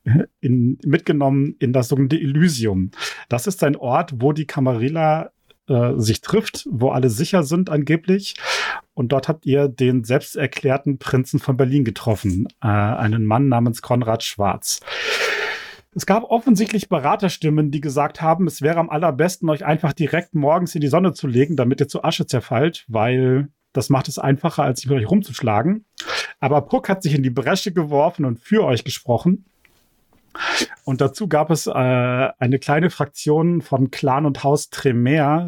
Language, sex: German, male